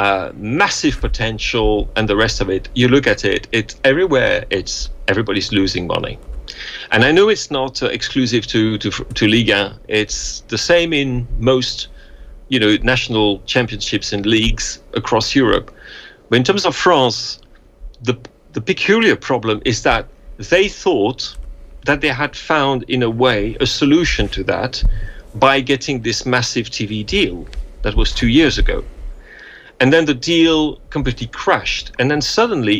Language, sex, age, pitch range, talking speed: English, male, 40-59, 105-135 Hz, 160 wpm